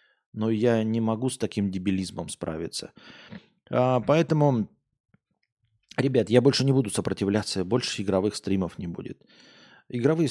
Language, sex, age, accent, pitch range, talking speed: Russian, male, 20-39, native, 95-115 Hz, 130 wpm